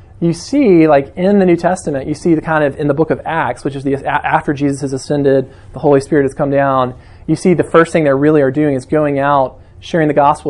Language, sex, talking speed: English, male, 255 wpm